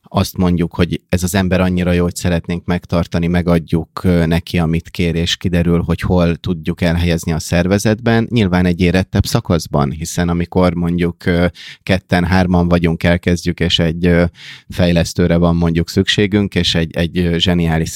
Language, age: Hungarian, 30-49